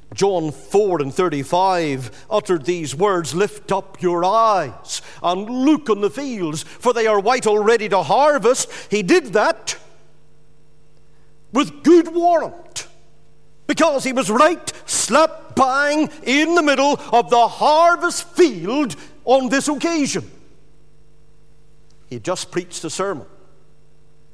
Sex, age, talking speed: male, 50-69, 120 wpm